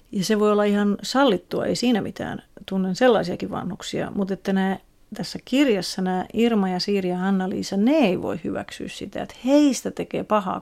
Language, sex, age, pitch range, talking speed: Finnish, female, 40-59, 190-225 Hz, 170 wpm